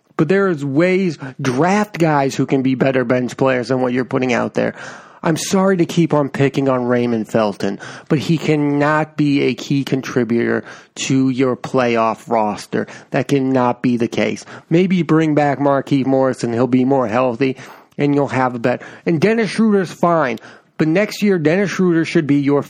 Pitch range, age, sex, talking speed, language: 125-155 Hz, 30-49, male, 180 wpm, English